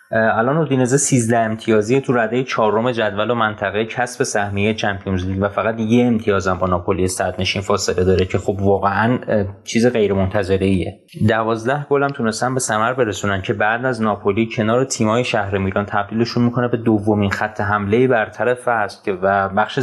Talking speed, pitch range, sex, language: 175 wpm, 105-125 Hz, male, Persian